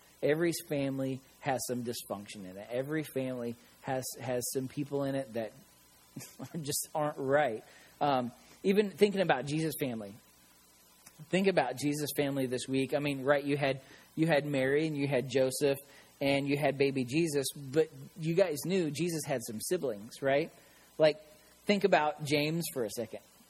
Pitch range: 130-180 Hz